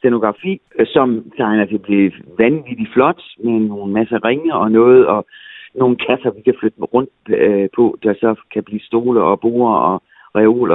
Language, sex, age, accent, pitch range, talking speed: Danish, male, 60-79, native, 110-155 Hz, 185 wpm